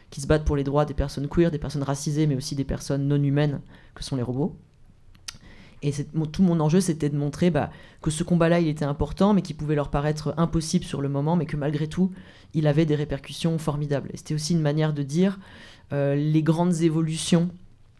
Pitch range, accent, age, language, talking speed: 145-165 Hz, French, 30-49, French, 220 wpm